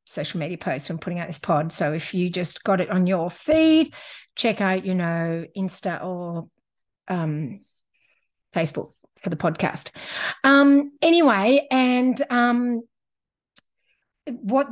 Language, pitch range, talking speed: English, 190-265 Hz, 135 wpm